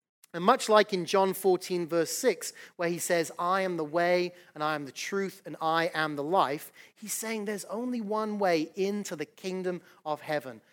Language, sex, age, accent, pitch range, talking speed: English, male, 30-49, British, 165-215 Hz, 200 wpm